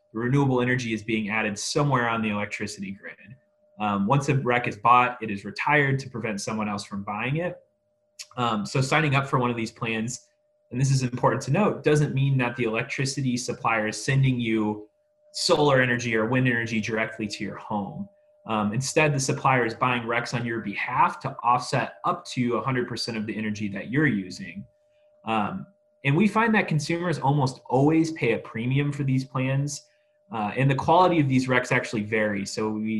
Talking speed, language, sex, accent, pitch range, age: 195 wpm, English, male, American, 110-140 Hz, 30-49